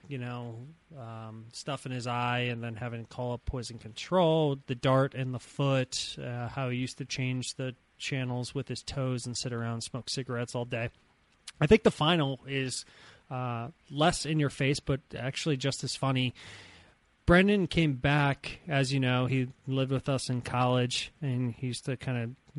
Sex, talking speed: male, 195 wpm